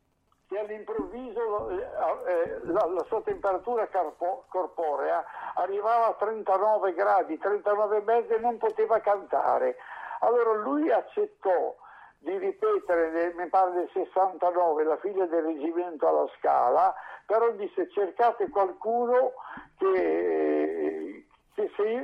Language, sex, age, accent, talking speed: Italian, male, 60-79, native, 105 wpm